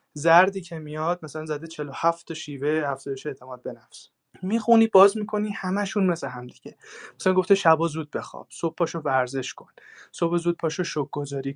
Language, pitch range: Persian, 140-175 Hz